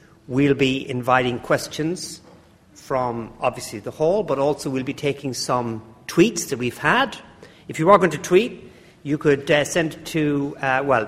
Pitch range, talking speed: 125-160 Hz, 175 wpm